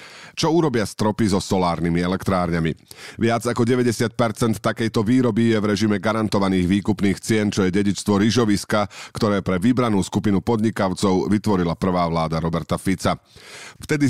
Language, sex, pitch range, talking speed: Slovak, male, 95-125 Hz, 135 wpm